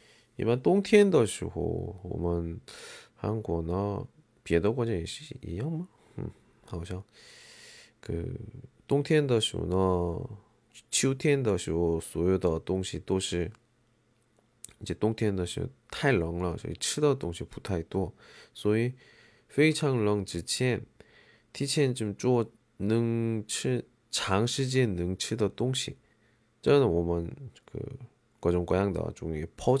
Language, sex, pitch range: Chinese, male, 95-125 Hz